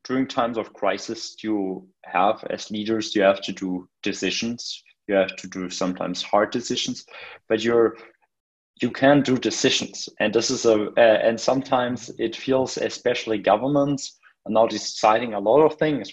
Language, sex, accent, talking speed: German, male, German, 165 wpm